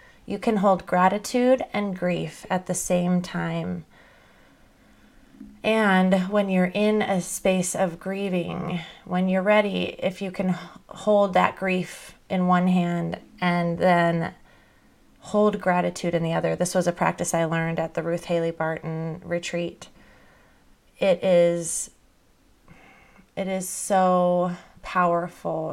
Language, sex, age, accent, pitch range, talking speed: English, female, 30-49, American, 175-195 Hz, 130 wpm